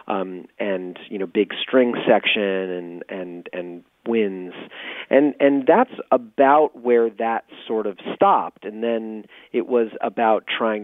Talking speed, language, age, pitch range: 145 wpm, English, 40-59, 95-120 Hz